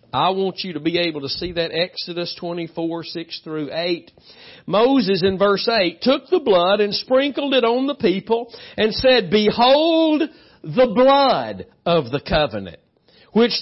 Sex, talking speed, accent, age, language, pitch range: male, 160 wpm, American, 50-69, English, 175-255 Hz